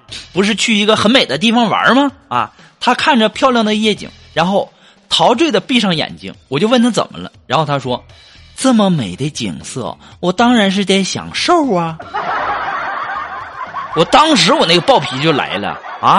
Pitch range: 160-240 Hz